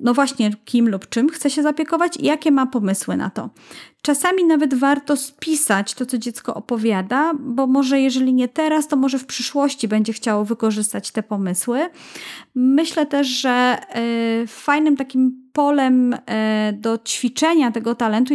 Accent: native